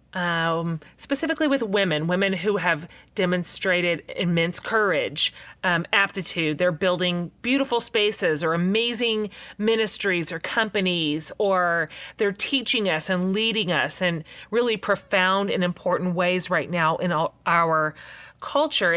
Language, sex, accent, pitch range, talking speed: English, female, American, 165-210 Hz, 125 wpm